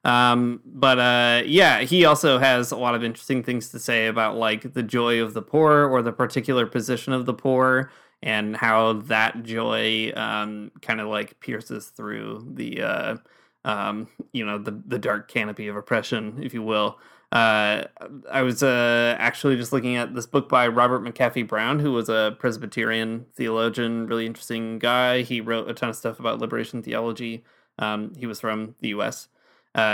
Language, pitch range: English, 115-125 Hz